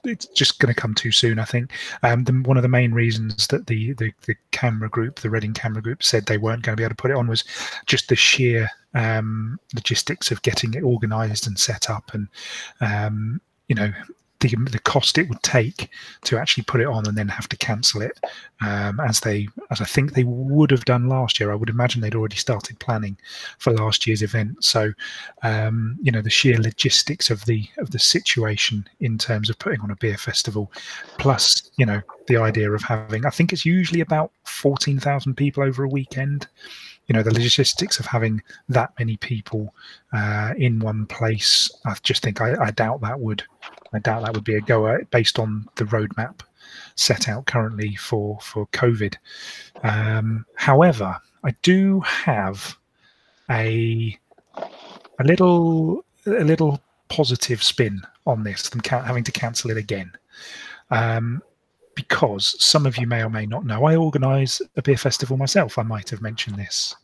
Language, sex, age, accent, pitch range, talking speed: English, male, 30-49, British, 110-130 Hz, 185 wpm